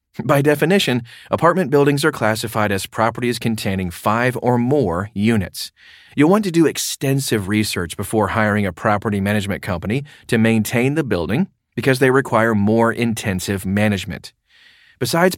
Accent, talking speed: American, 140 wpm